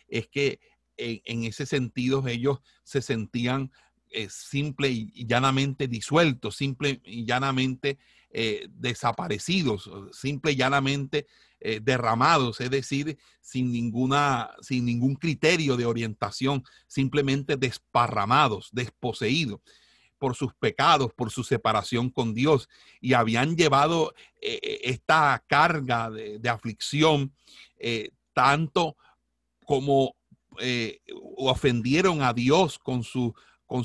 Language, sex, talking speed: Spanish, male, 100 wpm